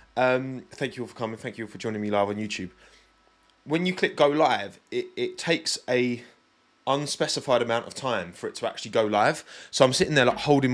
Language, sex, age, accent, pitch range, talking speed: English, male, 20-39, British, 105-140 Hz, 225 wpm